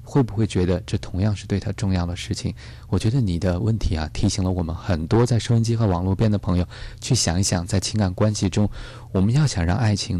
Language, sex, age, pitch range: Chinese, male, 20-39, 95-115 Hz